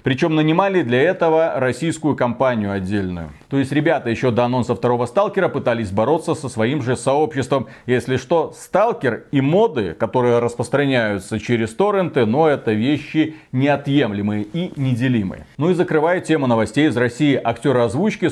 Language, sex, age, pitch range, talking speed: Russian, male, 40-59, 125-165 Hz, 145 wpm